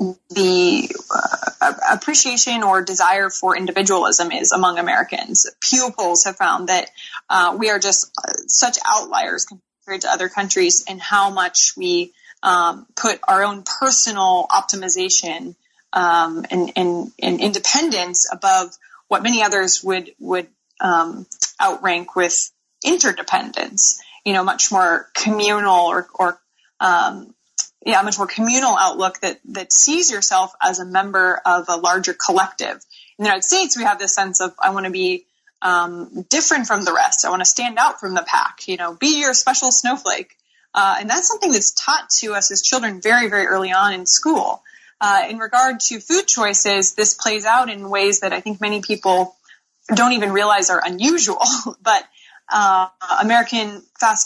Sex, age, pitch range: female, 20-39, 185-255 Hz